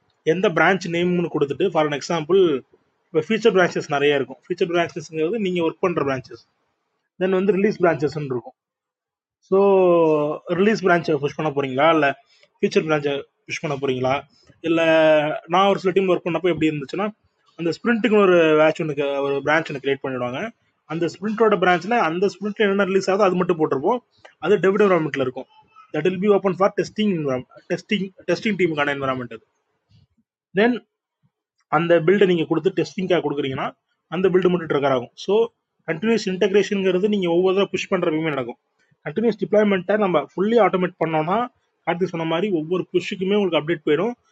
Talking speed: 155 wpm